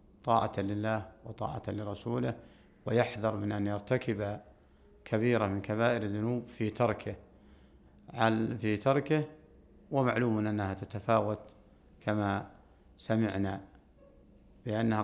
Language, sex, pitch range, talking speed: Arabic, male, 100-120 Hz, 90 wpm